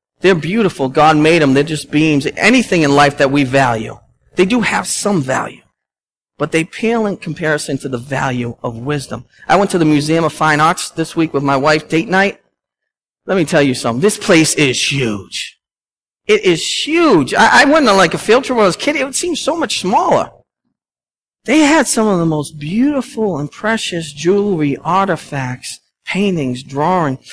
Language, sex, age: English, male, 40-59